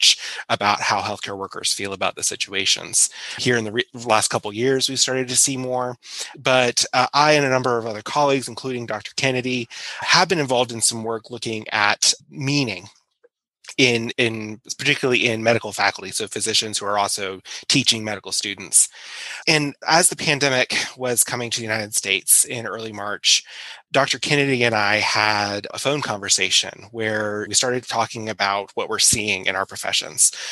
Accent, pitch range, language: American, 105-130 Hz, English